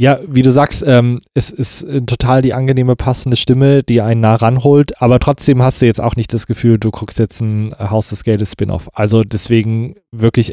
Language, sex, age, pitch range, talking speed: German, male, 20-39, 110-130 Hz, 210 wpm